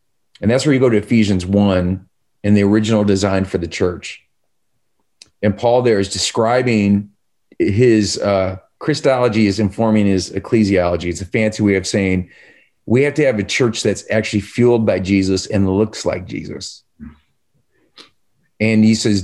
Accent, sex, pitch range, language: American, male, 100-125 Hz, English